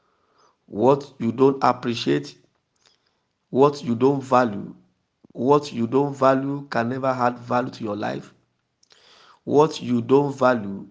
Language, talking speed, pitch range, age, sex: English, 125 wpm, 115-140 Hz, 50-69, male